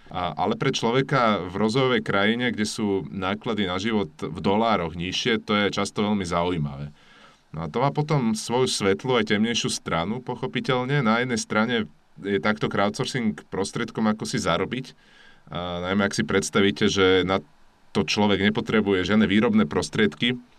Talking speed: 150 wpm